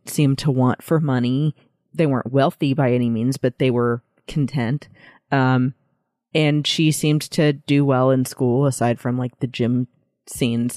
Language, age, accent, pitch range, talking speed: English, 30-49, American, 130-150 Hz, 165 wpm